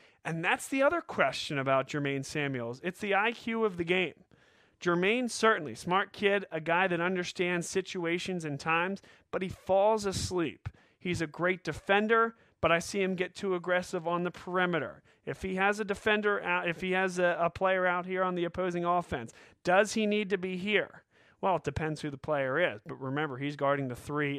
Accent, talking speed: American, 195 wpm